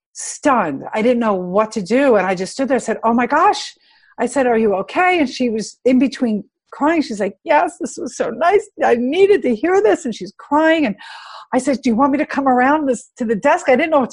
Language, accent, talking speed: English, American, 260 wpm